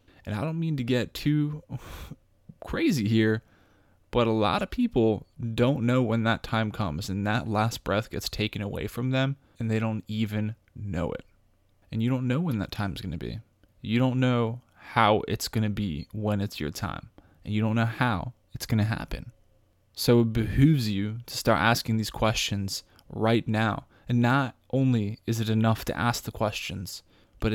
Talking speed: 195 wpm